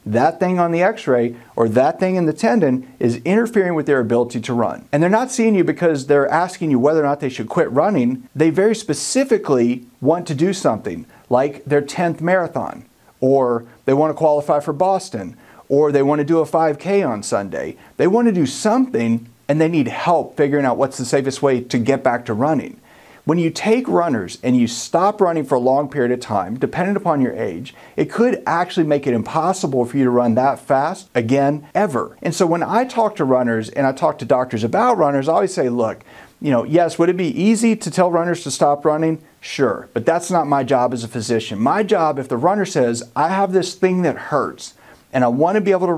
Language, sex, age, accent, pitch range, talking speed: English, male, 40-59, American, 125-180 Hz, 220 wpm